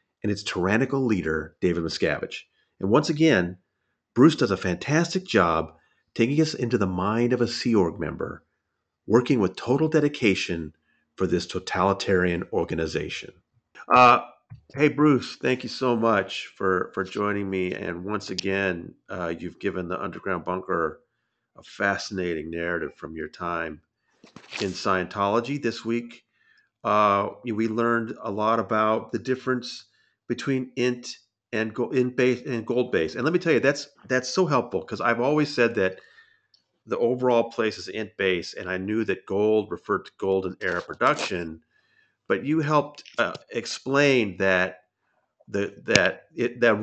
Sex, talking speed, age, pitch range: male, 150 wpm, 40-59, 95-125 Hz